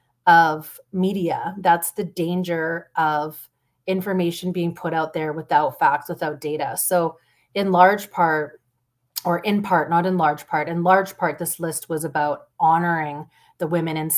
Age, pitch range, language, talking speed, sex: 30-49, 155-185 Hz, French, 155 wpm, female